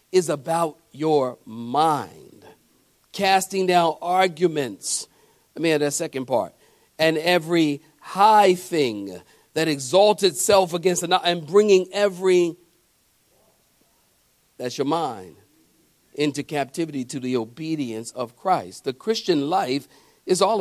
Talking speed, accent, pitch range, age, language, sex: 120 wpm, American, 150-200 Hz, 50-69, English, male